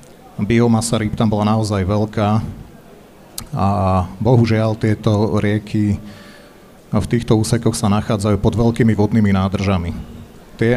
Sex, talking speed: male, 110 wpm